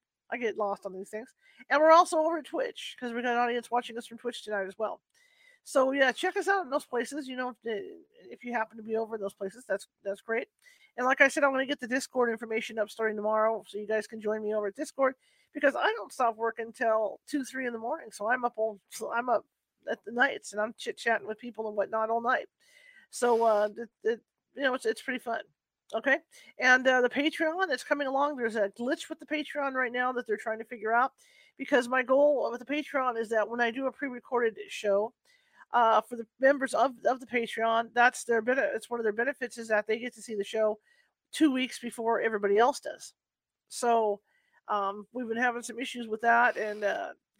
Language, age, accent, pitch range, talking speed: English, 40-59, American, 220-275 Hz, 235 wpm